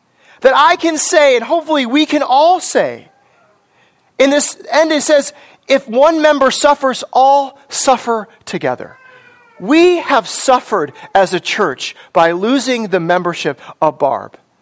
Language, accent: English, American